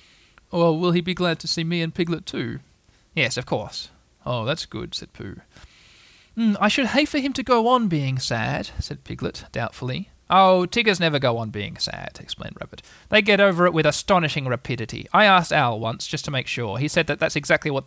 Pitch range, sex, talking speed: 135-190 Hz, male, 215 wpm